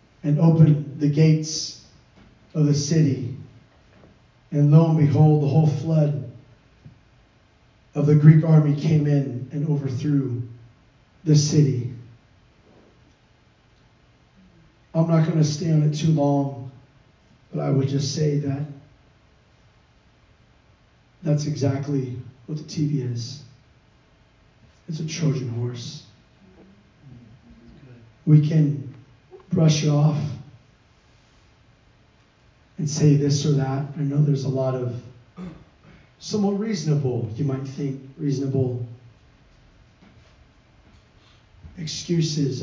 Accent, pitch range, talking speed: American, 125-150 Hz, 100 wpm